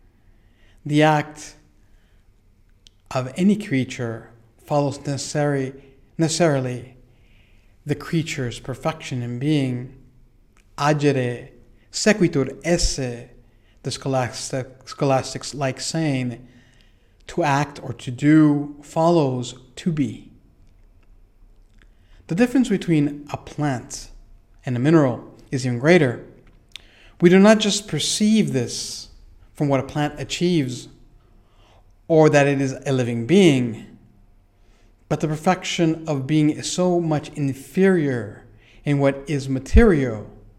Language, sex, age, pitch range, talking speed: English, male, 50-69, 115-150 Hz, 100 wpm